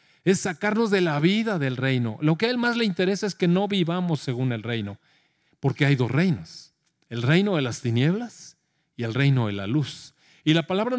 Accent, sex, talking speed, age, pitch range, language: Mexican, male, 215 wpm, 40-59, 135-190 Hz, Spanish